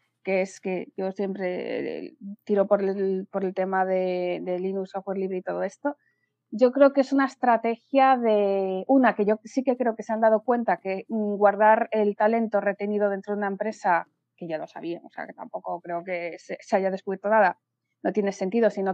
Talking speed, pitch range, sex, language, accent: 205 wpm, 195-220 Hz, female, Spanish, Spanish